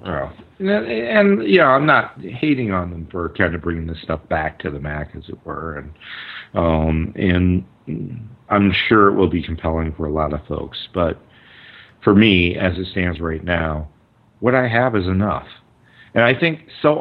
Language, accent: English, American